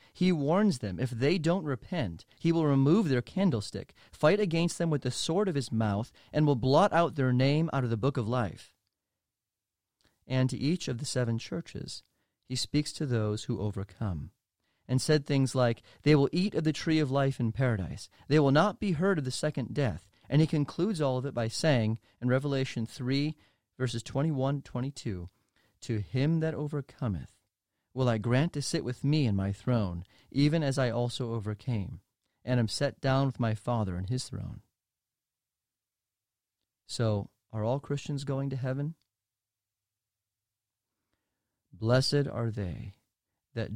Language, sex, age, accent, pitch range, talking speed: English, male, 30-49, American, 105-140 Hz, 165 wpm